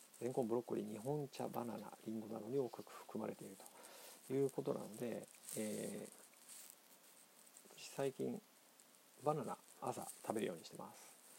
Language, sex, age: Japanese, male, 50-69